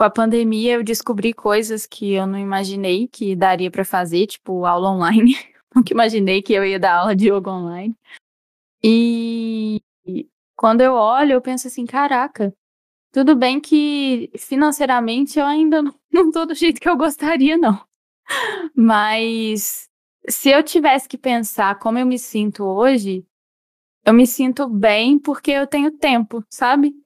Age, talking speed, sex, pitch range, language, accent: 10-29, 155 wpm, female, 205-265 Hz, Portuguese, Brazilian